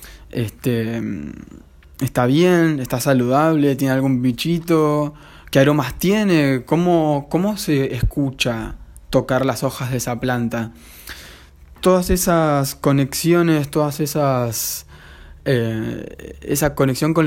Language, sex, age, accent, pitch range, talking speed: Spanish, male, 20-39, Argentinian, 120-145 Hz, 105 wpm